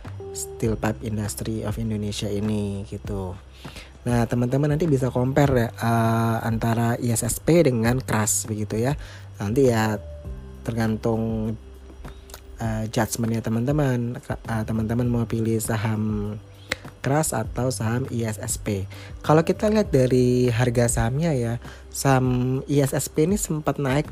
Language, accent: Indonesian, native